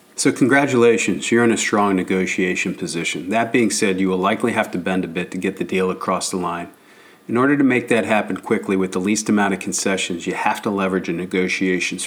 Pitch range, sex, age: 95-105 Hz, male, 40-59